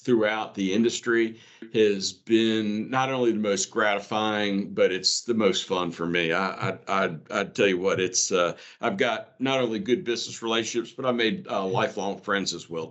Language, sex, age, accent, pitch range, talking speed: English, male, 50-69, American, 110-130 Hz, 190 wpm